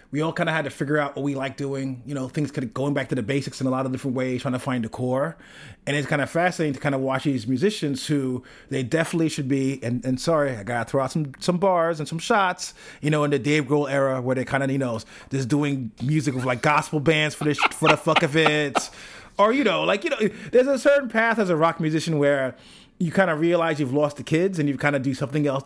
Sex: male